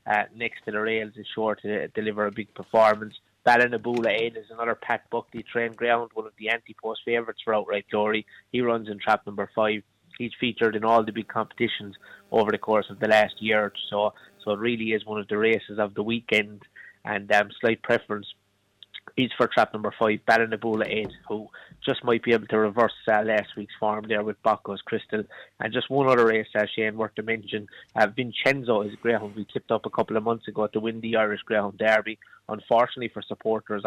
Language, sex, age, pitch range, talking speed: English, male, 20-39, 105-115 Hz, 215 wpm